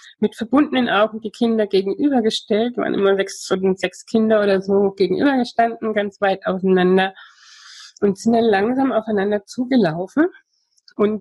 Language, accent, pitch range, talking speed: German, German, 170-215 Hz, 125 wpm